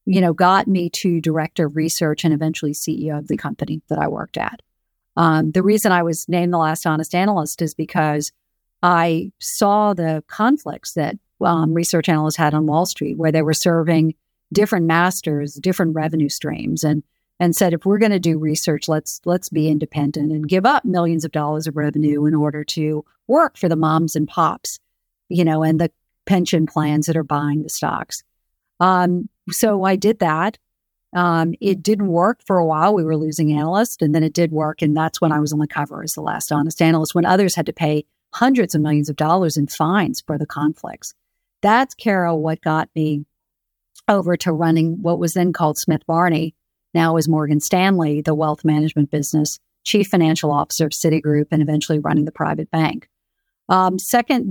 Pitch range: 155-180 Hz